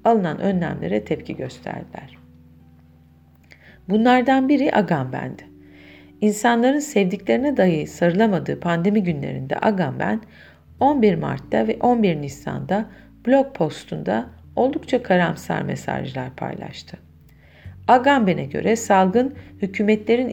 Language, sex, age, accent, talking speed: Turkish, female, 50-69, native, 85 wpm